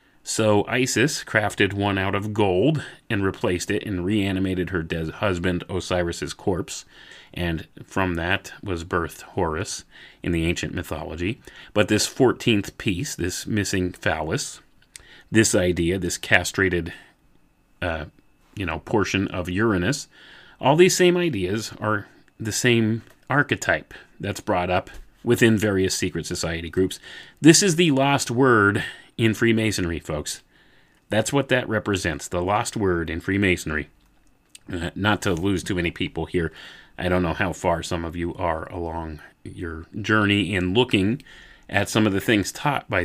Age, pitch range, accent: 30-49, 90-115 Hz, American